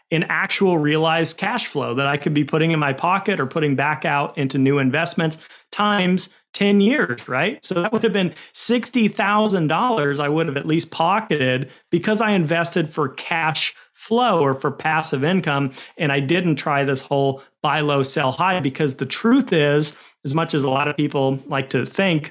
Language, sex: English, male